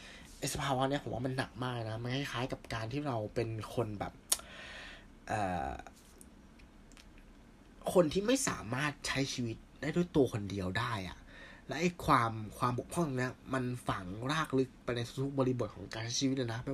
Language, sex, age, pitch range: Thai, male, 20-39, 115-140 Hz